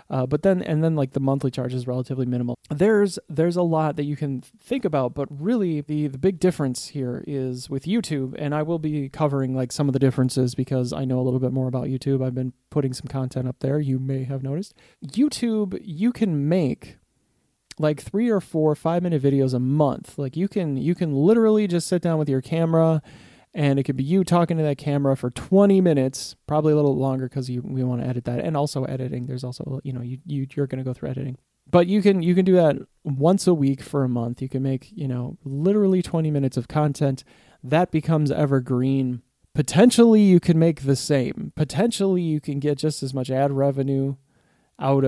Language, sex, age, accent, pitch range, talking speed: English, male, 30-49, American, 130-165 Hz, 220 wpm